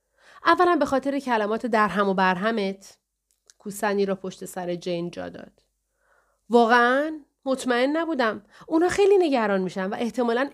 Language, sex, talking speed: Persian, female, 130 wpm